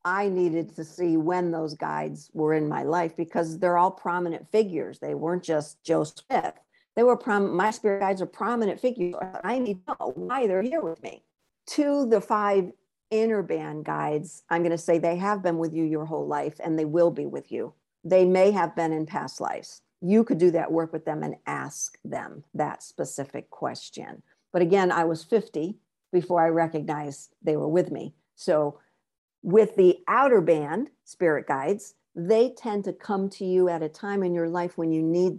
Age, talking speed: 50-69, 195 wpm